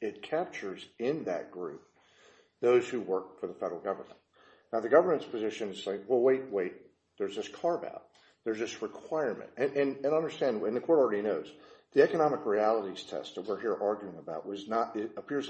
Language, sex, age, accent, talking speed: English, male, 50-69, American, 195 wpm